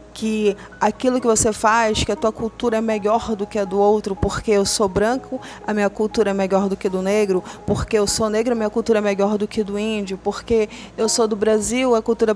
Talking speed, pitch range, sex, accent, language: 240 wpm, 210-245 Hz, female, Brazilian, Portuguese